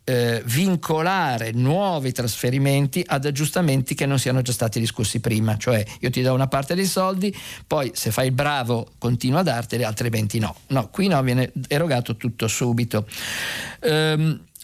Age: 50-69